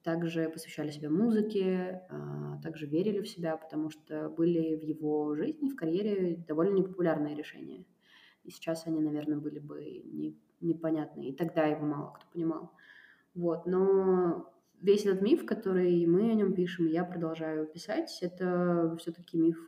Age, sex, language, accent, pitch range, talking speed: 20-39, female, Russian, native, 155-185 Hz, 145 wpm